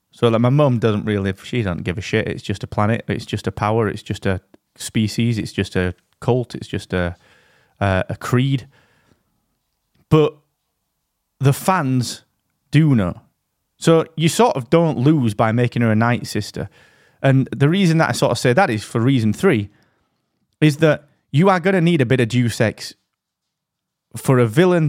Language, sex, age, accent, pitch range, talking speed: English, male, 30-49, British, 105-145 Hz, 190 wpm